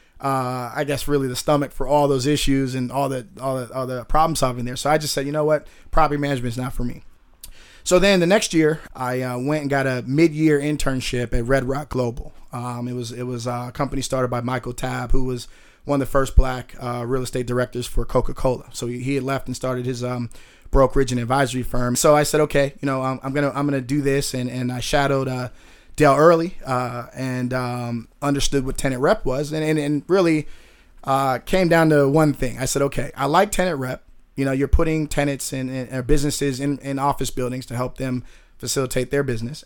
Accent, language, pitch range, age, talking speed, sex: American, English, 125-145 Hz, 30-49, 225 wpm, male